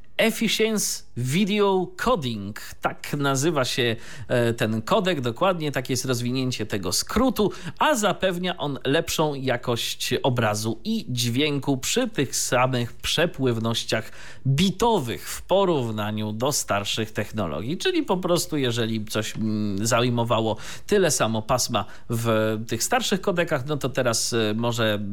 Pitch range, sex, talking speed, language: 110-150 Hz, male, 115 wpm, Polish